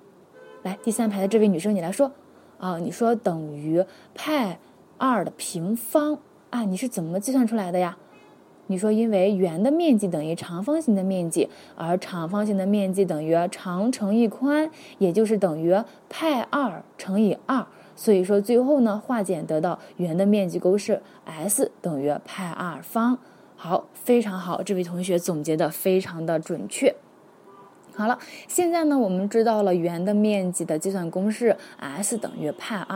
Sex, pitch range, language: female, 190-250 Hz, Chinese